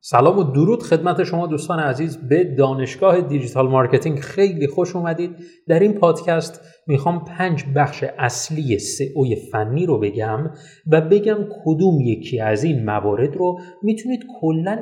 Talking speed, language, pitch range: 140 wpm, Persian, 135-185 Hz